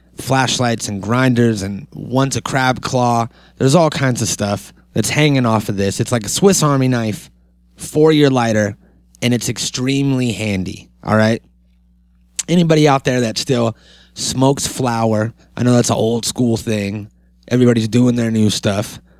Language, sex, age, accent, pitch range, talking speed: English, male, 30-49, American, 100-130 Hz, 160 wpm